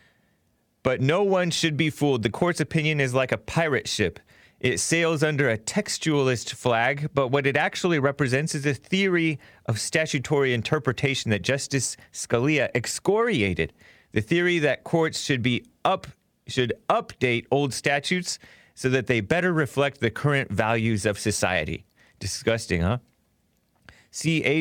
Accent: American